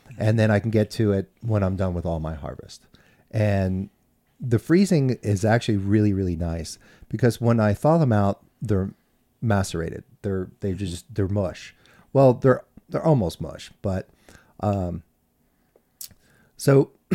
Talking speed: 150 wpm